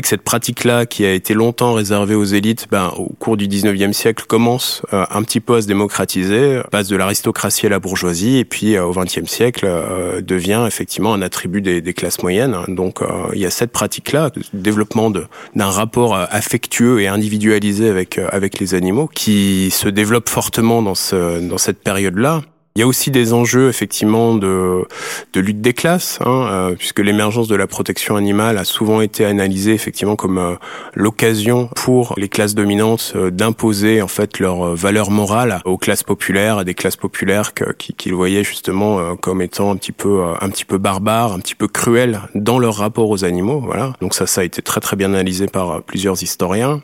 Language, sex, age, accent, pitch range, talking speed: French, male, 20-39, French, 95-115 Hz, 195 wpm